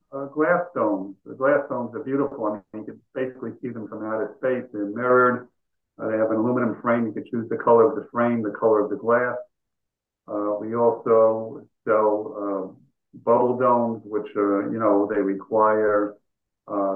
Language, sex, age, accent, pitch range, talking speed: English, male, 50-69, American, 105-120 Hz, 190 wpm